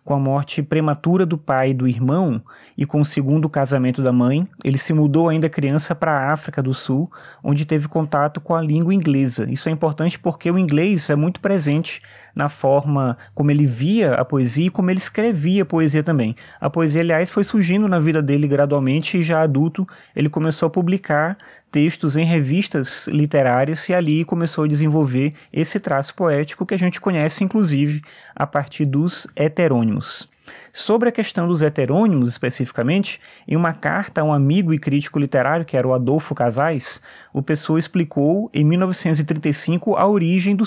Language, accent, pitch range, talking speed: Portuguese, Brazilian, 145-180 Hz, 175 wpm